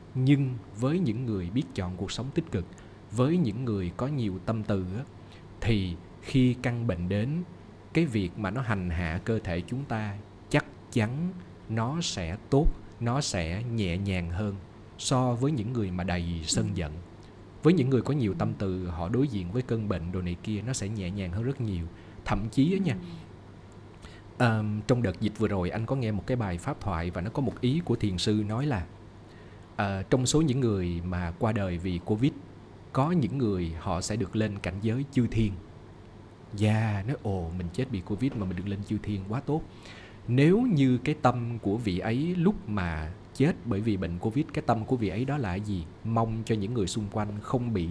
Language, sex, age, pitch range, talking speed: Vietnamese, male, 20-39, 95-125 Hz, 210 wpm